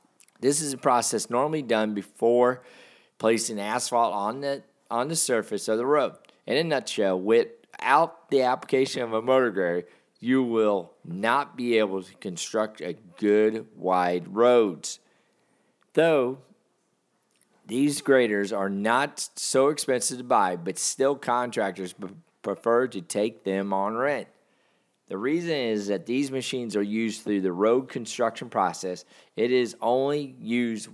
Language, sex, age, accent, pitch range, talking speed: English, male, 40-59, American, 100-125 Hz, 145 wpm